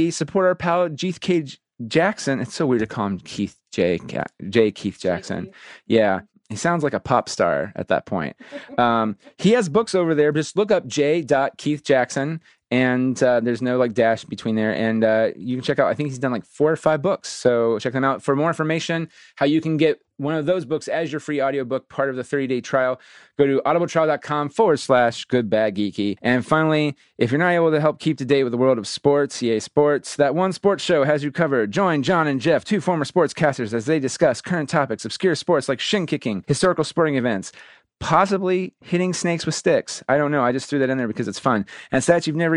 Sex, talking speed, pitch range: male, 230 wpm, 120-160 Hz